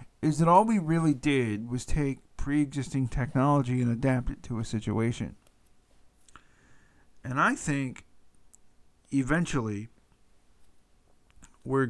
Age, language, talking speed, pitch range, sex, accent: 50-69, English, 105 wpm, 115-140 Hz, male, American